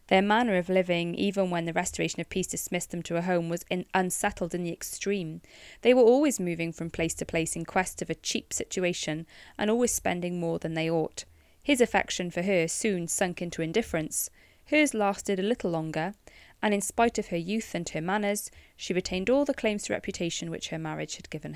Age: 20-39